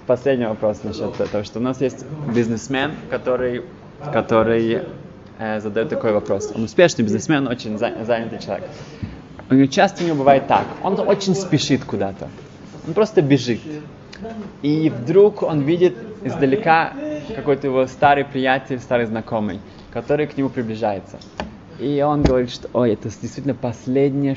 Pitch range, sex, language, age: 115-150 Hz, male, Russian, 20-39